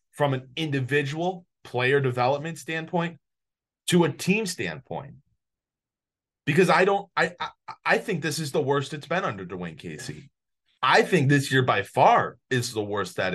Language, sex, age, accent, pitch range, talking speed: English, male, 30-49, American, 120-155 Hz, 160 wpm